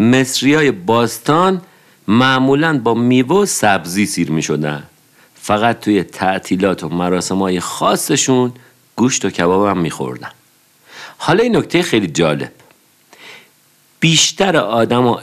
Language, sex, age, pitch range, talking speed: Persian, male, 50-69, 90-145 Hz, 115 wpm